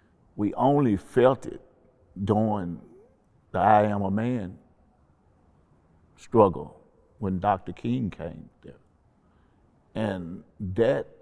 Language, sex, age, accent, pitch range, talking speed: English, male, 50-69, American, 90-115 Hz, 95 wpm